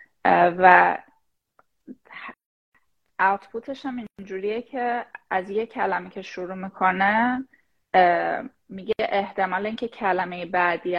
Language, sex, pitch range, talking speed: Persian, female, 175-220 Hz, 85 wpm